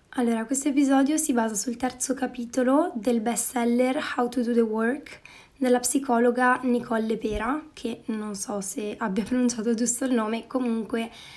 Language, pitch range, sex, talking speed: Italian, 225-260 Hz, female, 155 wpm